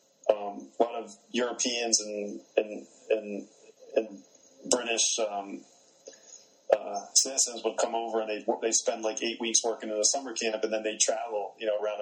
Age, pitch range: 30-49, 105-115 Hz